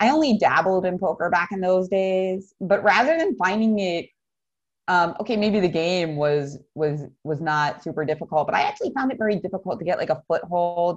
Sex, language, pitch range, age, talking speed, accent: female, English, 150-190 Hz, 30-49, 200 wpm, American